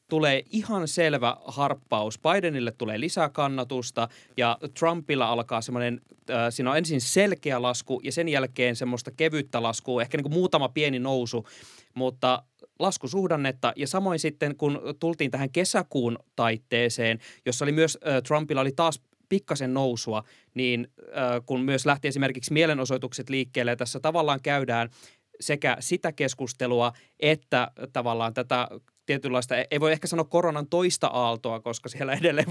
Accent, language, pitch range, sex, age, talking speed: native, Finnish, 120-150 Hz, male, 20-39, 140 wpm